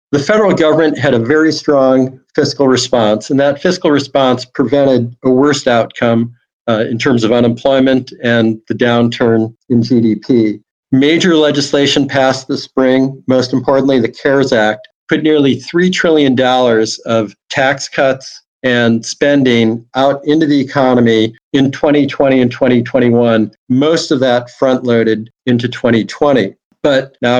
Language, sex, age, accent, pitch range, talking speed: English, male, 50-69, American, 120-140 Hz, 135 wpm